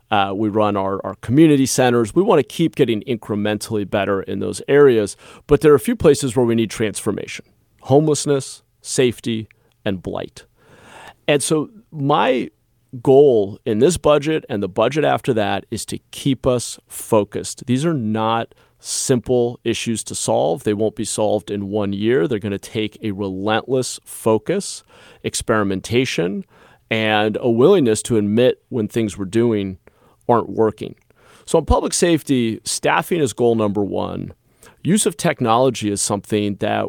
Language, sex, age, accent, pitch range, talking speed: English, male, 40-59, American, 105-130 Hz, 155 wpm